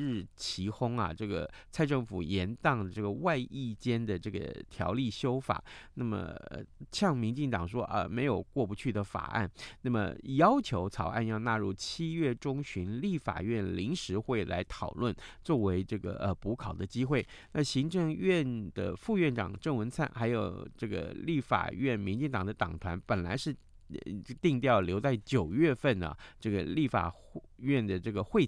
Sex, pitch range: male, 95-135 Hz